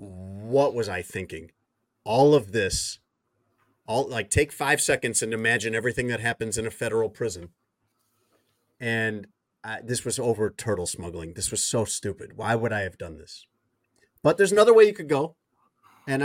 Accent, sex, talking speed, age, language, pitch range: American, male, 165 wpm, 30-49, English, 105-145 Hz